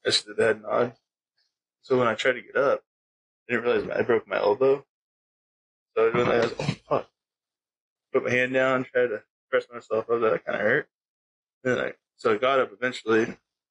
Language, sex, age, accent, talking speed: English, male, 20-39, American, 210 wpm